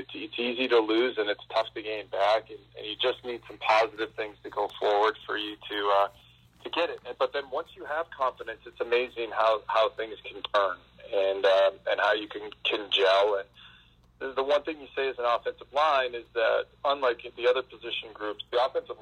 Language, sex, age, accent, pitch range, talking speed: English, male, 40-59, American, 105-135 Hz, 210 wpm